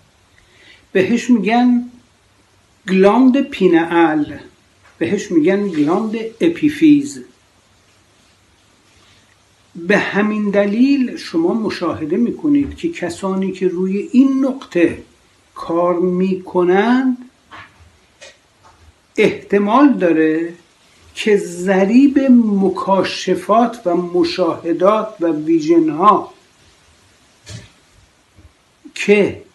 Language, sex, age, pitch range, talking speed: Persian, male, 60-79, 170-250 Hz, 65 wpm